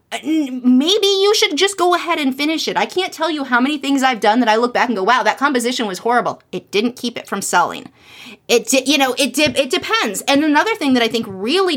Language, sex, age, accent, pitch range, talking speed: English, female, 30-49, American, 200-265 Hz, 245 wpm